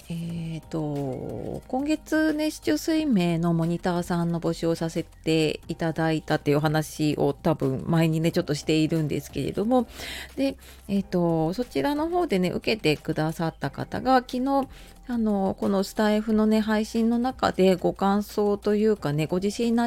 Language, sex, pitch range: Japanese, female, 160-215 Hz